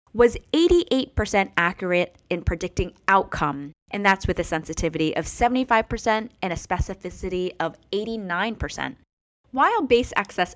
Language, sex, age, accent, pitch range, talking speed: English, female, 10-29, American, 165-245 Hz, 120 wpm